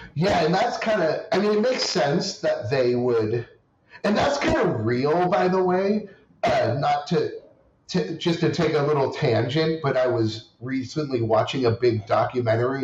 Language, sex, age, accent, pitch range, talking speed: English, male, 30-49, American, 110-145 Hz, 180 wpm